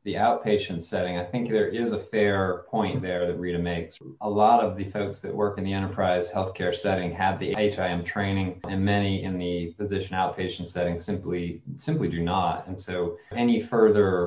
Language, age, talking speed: English, 30-49, 190 wpm